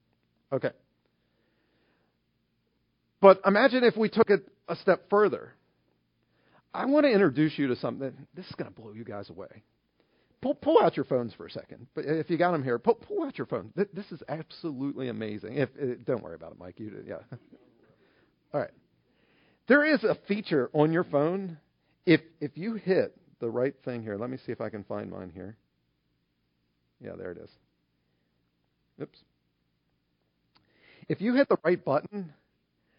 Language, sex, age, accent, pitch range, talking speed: English, male, 50-69, American, 135-225 Hz, 170 wpm